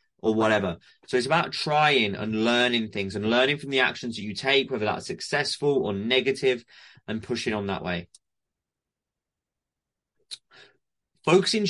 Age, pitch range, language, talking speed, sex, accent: 30-49, 110-140 Hz, English, 145 wpm, male, British